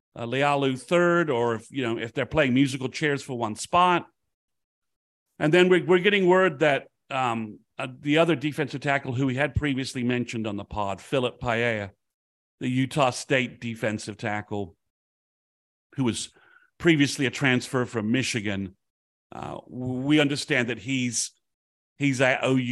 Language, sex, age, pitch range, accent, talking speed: English, male, 50-69, 115-155 Hz, American, 150 wpm